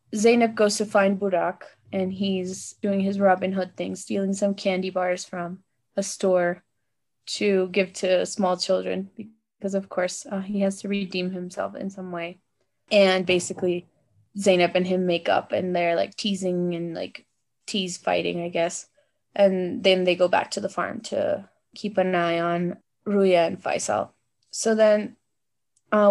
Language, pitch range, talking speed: English, 180-205 Hz, 165 wpm